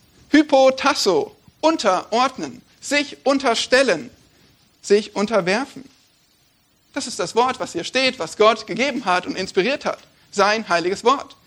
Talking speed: 120 wpm